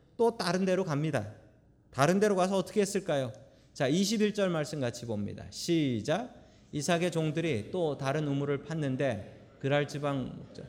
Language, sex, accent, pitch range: Korean, male, native, 125-195 Hz